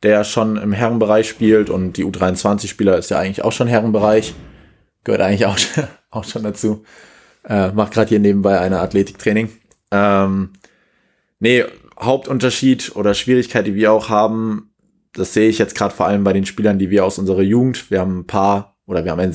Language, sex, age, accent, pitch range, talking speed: German, male, 20-39, German, 100-115 Hz, 185 wpm